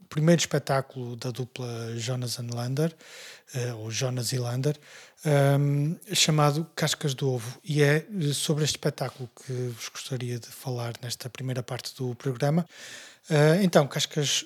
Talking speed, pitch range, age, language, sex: 145 wpm, 125-145 Hz, 20-39, Portuguese, male